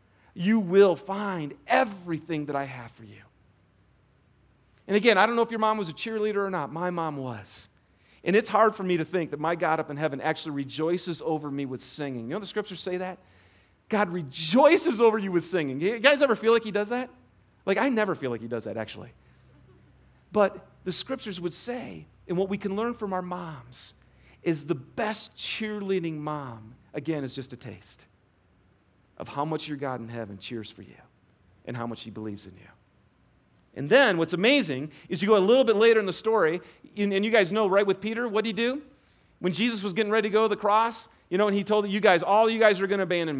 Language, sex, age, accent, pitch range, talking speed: English, male, 40-59, American, 130-215 Hz, 225 wpm